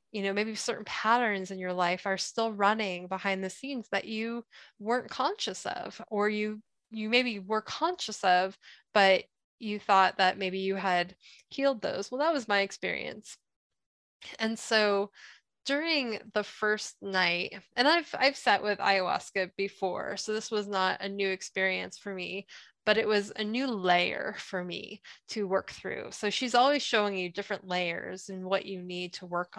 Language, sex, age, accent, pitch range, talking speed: English, female, 10-29, American, 190-225 Hz, 175 wpm